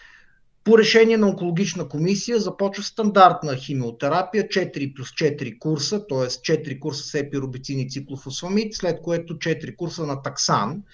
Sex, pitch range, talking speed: male, 135-175 Hz, 130 wpm